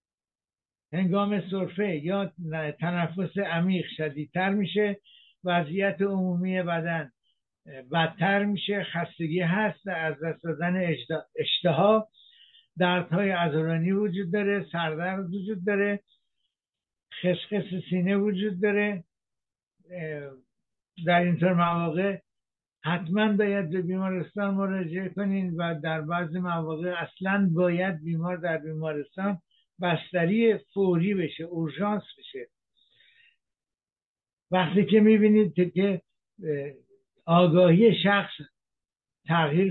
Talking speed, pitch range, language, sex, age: 90 wpm, 170-195 Hz, Persian, male, 60-79